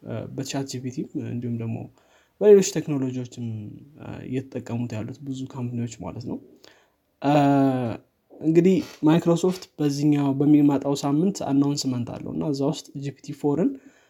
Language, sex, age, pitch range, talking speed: Amharic, male, 20-39, 125-150 Hz, 90 wpm